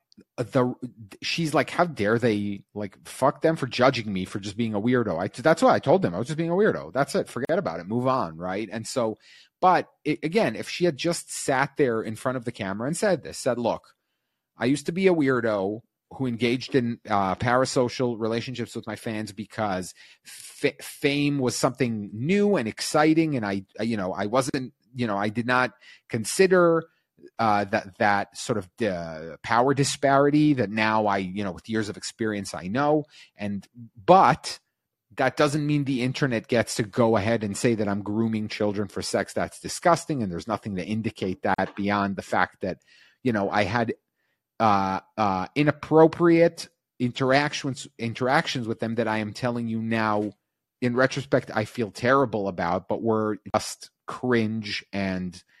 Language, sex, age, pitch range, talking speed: English, male, 30-49, 105-135 Hz, 185 wpm